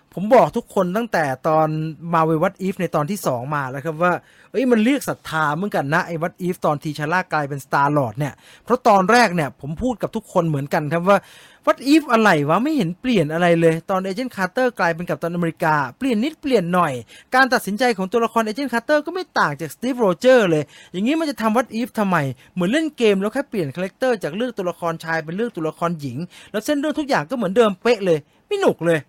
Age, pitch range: 20-39, 165-235 Hz